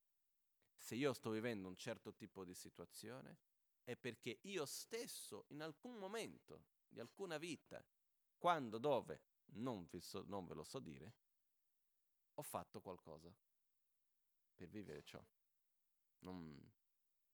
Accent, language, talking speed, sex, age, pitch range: native, Italian, 120 wpm, male, 40-59, 105-165 Hz